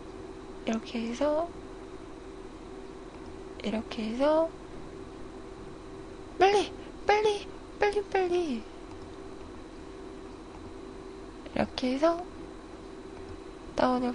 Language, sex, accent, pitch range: Korean, female, native, 215-350 Hz